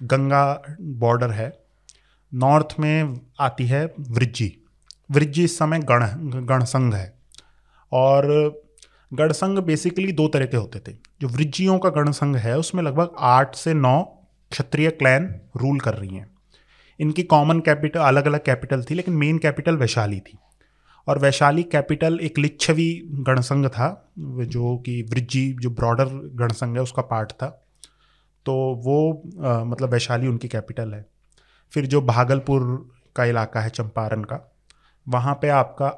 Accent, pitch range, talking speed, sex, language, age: native, 125-155 Hz, 140 wpm, male, Hindi, 30-49